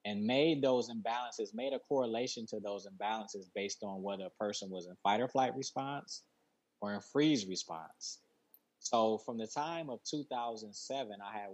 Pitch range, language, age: 100-125 Hz, English, 20-39